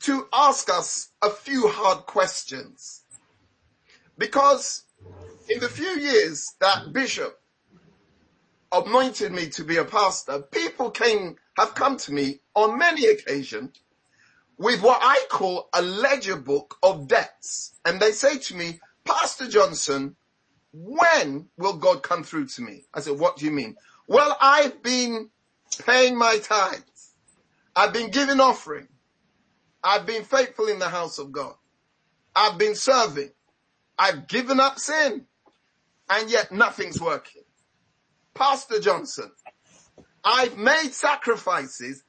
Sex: male